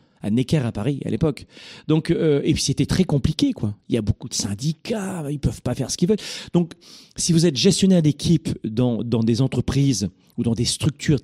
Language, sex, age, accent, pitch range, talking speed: French, male, 40-59, French, 125-165 Hz, 220 wpm